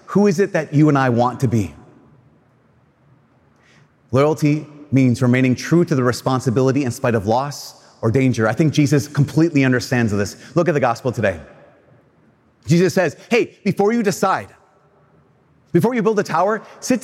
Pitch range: 135-200 Hz